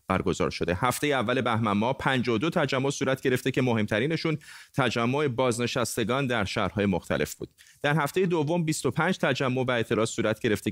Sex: male